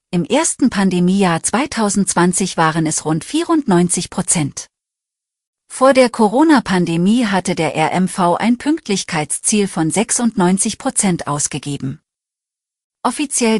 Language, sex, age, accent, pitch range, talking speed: German, female, 40-59, German, 165-215 Hz, 90 wpm